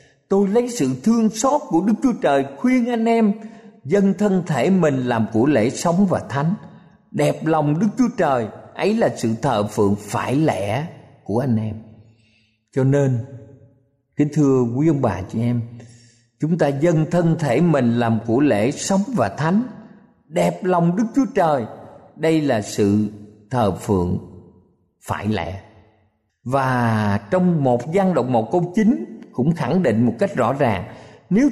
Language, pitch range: Vietnamese, 120-190 Hz